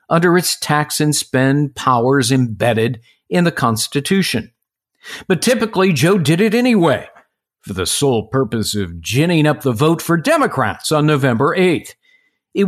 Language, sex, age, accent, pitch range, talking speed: English, male, 50-69, American, 130-180 Hz, 145 wpm